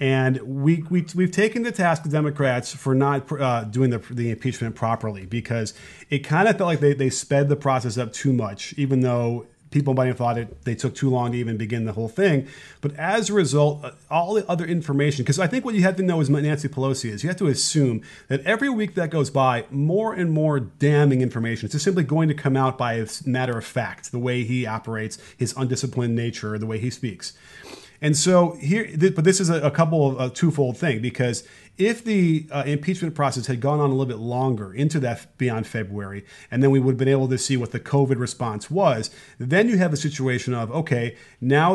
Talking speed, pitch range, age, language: 225 wpm, 120-155 Hz, 30-49, English